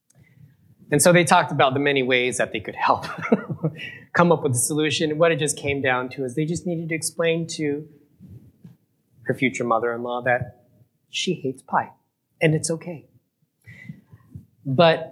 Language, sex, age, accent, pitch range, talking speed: English, male, 30-49, American, 130-175 Hz, 165 wpm